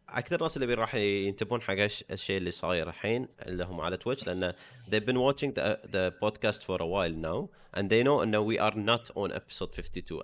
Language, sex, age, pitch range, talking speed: English, male, 30-49, 85-110 Hz, 195 wpm